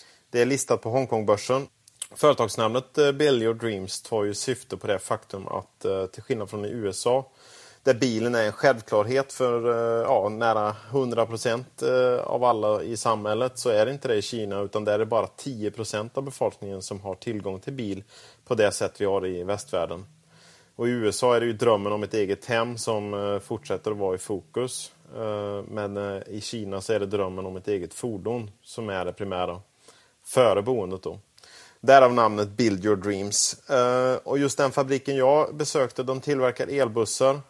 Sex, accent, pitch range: male, Norwegian, 105-120 Hz